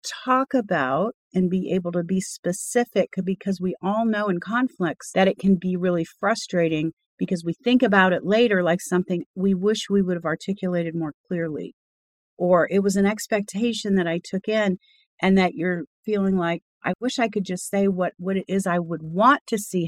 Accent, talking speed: American, 195 wpm